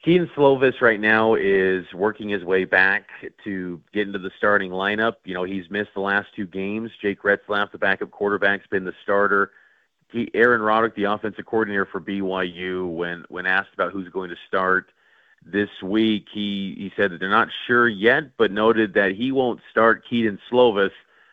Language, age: English, 40-59